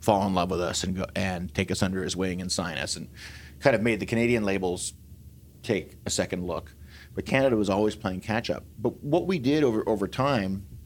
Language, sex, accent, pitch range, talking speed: English, male, American, 90-110 Hz, 220 wpm